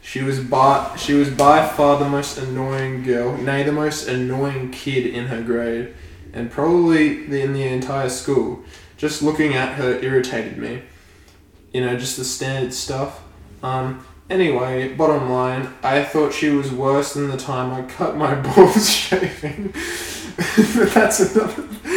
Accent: Australian